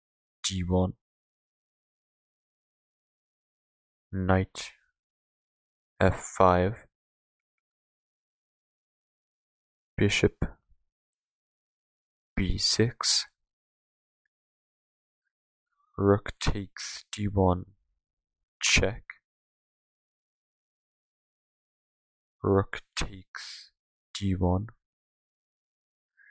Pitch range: 70-100 Hz